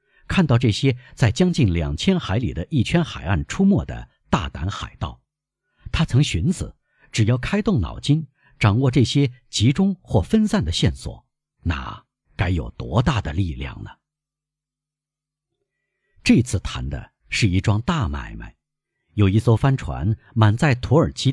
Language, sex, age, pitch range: Chinese, male, 50-69, 100-145 Hz